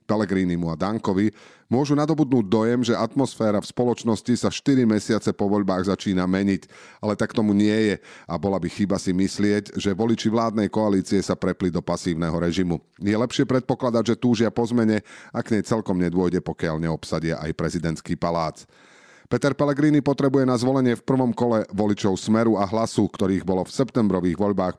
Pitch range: 90-115 Hz